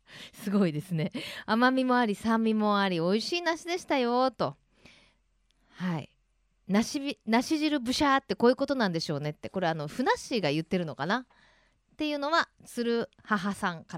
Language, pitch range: Japanese, 185-270 Hz